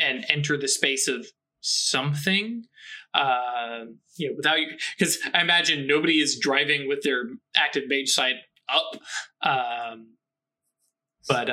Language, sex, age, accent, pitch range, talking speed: English, male, 20-39, American, 130-150 Hz, 130 wpm